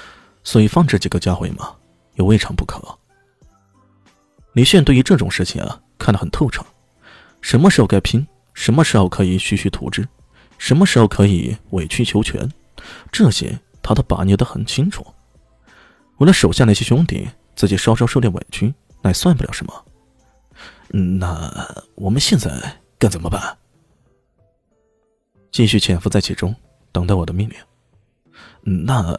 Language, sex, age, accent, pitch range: Chinese, male, 20-39, native, 95-130 Hz